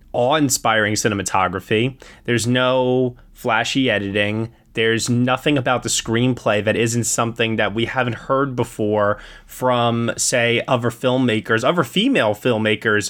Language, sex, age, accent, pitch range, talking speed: English, male, 20-39, American, 110-145 Hz, 120 wpm